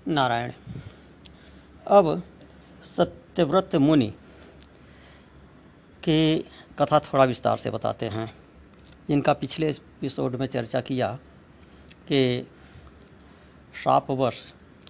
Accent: native